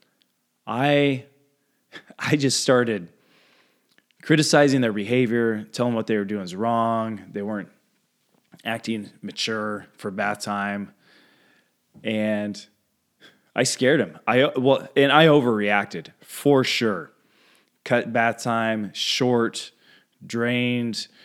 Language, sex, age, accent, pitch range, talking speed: English, male, 20-39, American, 105-135 Hz, 100 wpm